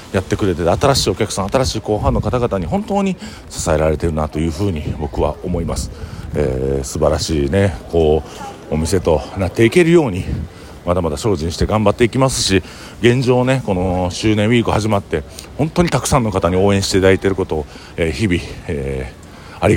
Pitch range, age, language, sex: 80-110 Hz, 50-69, Japanese, male